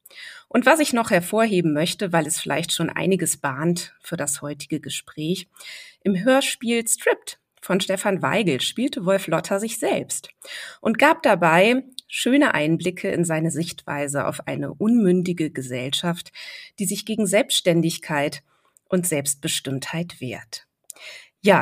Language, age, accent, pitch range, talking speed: German, 30-49, German, 160-235 Hz, 130 wpm